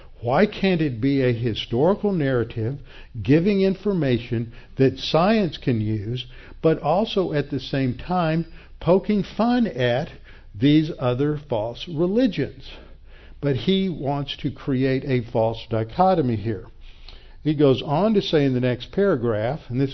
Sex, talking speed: male, 140 wpm